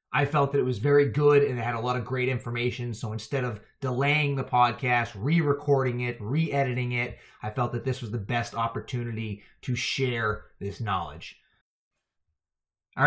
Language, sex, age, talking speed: English, male, 30-49, 175 wpm